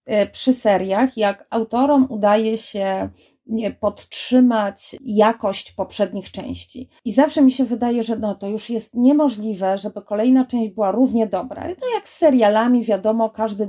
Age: 30-49